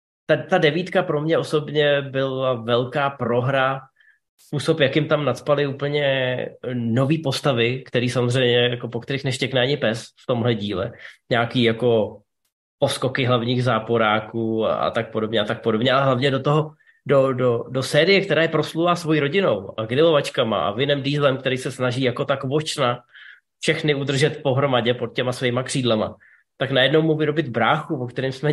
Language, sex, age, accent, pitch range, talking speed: Czech, male, 20-39, native, 125-150 Hz, 160 wpm